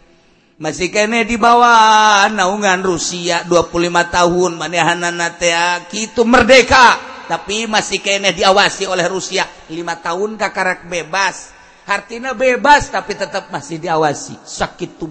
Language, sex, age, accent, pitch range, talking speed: Indonesian, male, 50-69, native, 165-195 Hz, 110 wpm